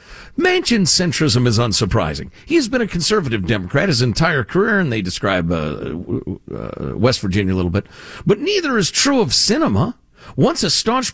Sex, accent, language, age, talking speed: male, American, English, 50-69, 165 wpm